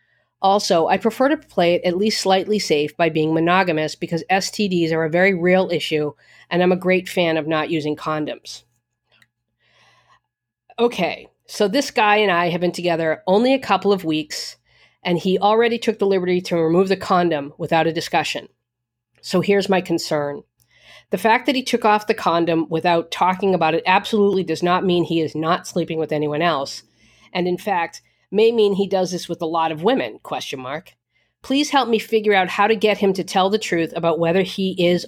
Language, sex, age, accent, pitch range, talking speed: English, female, 40-59, American, 165-205 Hz, 195 wpm